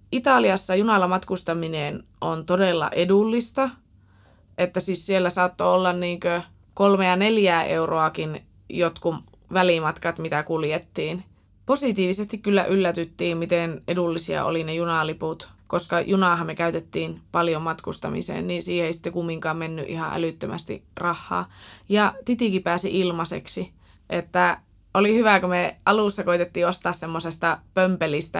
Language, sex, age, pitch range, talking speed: Finnish, female, 20-39, 165-190 Hz, 120 wpm